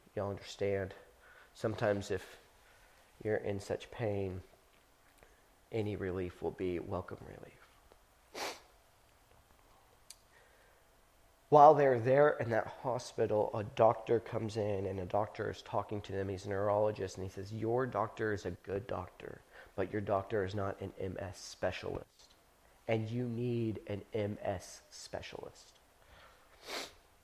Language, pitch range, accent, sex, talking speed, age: English, 100-115 Hz, American, male, 125 wpm, 40-59